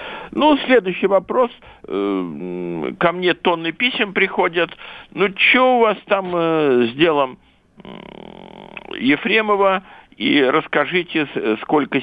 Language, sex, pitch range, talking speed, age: Russian, male, 125-200 Hz, 95 wpm, 60-79